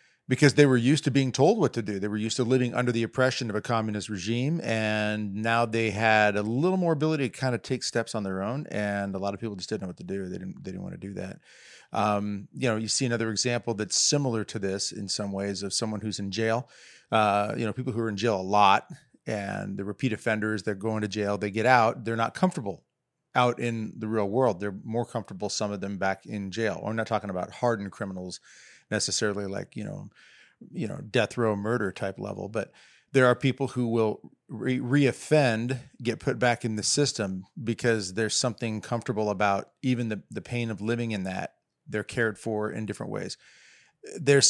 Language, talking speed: English, 220 wpm